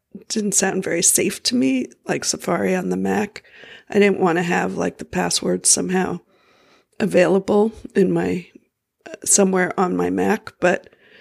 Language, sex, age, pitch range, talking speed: English, female, 50-69, 175-200 Hz, 155 wpm